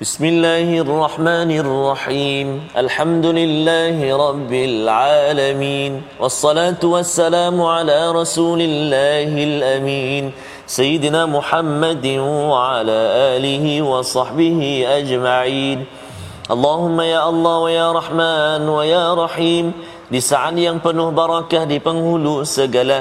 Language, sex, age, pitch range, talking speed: Malayalam, male, 30-49, 145-195 Hz, 35 wpm